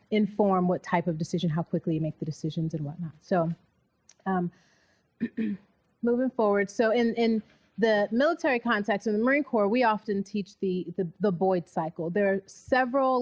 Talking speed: 170 wpm